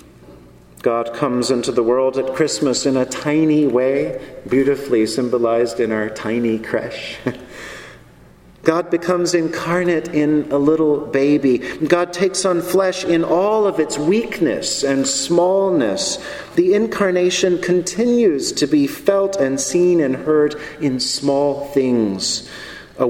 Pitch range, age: 115-155 Hz, 40-59